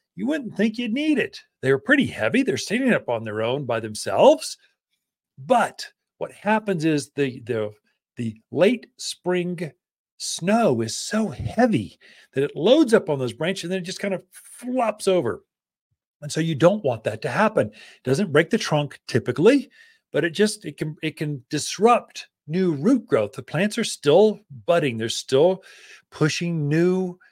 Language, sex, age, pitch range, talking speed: English, male, 40-59, 130-205 Hz, 175 wpm